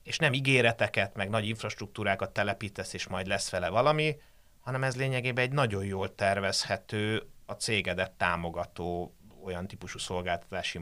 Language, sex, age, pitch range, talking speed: Hungarian, male, 30-49, 95-125 Hz, 140 wpm